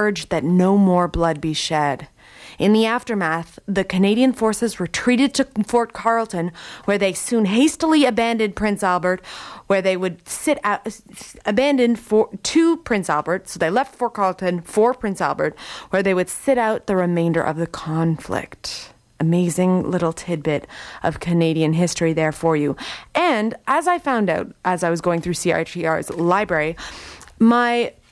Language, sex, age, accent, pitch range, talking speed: English, female, 30-49, American, 170-240 Hz, 155 wpm